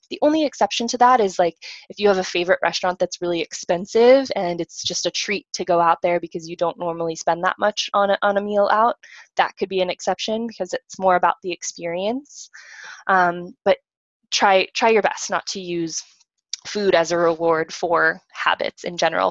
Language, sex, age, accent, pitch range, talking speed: English, female, 20-39, American, 175-210 Hz, 205 wpm